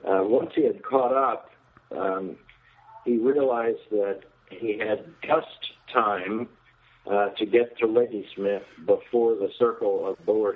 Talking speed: 135 wpm